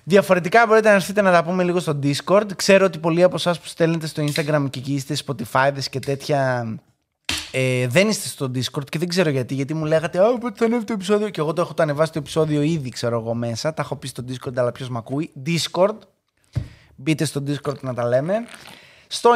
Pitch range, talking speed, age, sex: 135-180 Hz, 220 wpm, 20-39, male